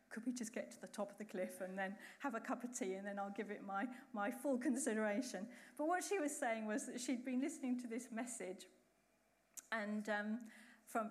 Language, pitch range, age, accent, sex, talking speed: English, 220-275 Hz, 40-59, British, female, 225 wpm